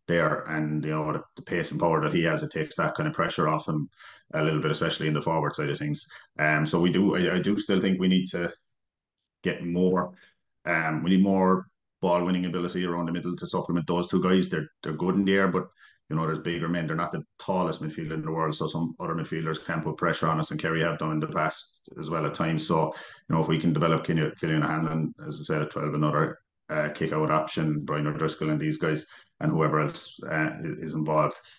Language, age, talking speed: English, 30-49, 250 wpm